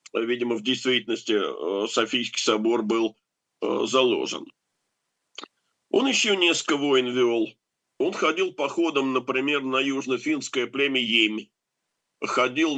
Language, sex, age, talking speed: Russian, male, 50-69, 100 wpm